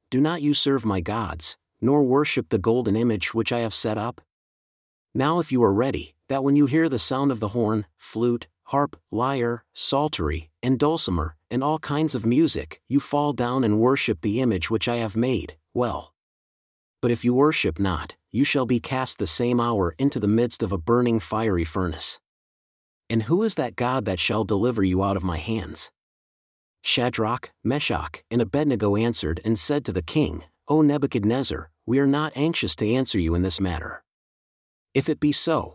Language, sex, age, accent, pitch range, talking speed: English, male, 40-59, American, 100-135 Hz, 190 wpm